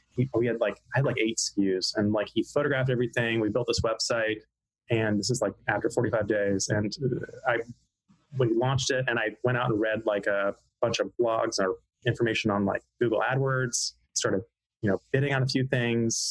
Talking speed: 200 wpm